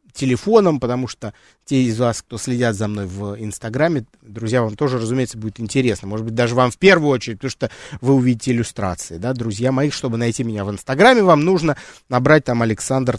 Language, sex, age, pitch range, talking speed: Russian, male, 30-49, 115-160 Hz, 195 wpm